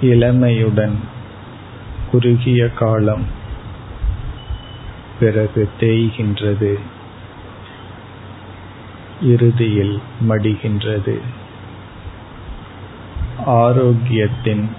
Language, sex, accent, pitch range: Tamil, male, native, 100-115 Hz